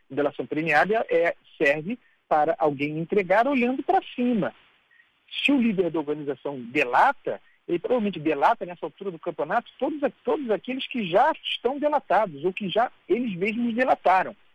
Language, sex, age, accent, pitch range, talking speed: Portuguese, male, 50-69, Brazilian, 155-240 Hz, 150 wpm